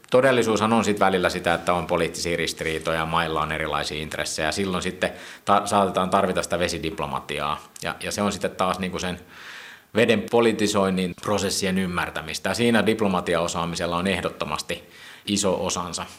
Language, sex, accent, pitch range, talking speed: Finnish, male, native, 85-100 Hz, 150 wpm